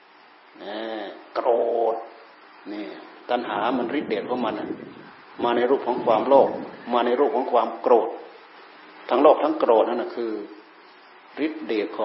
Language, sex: Thai, male